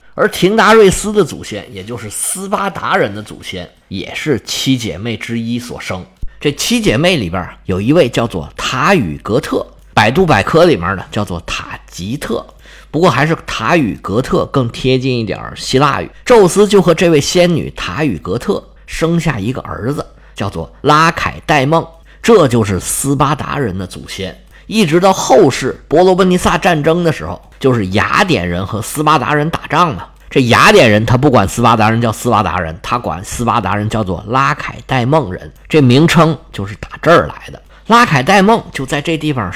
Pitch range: 110-170 Hz